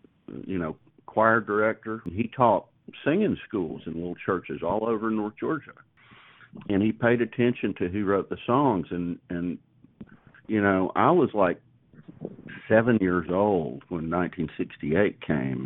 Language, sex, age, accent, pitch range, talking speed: English, male, 50-69, American, 85-105 Hz, 140 wpm